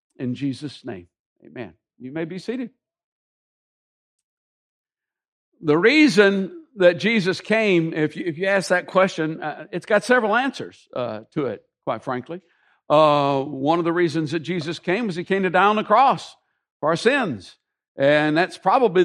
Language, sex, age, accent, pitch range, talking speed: English, male, 60-79, American, 150-195 Hz, 165 wpm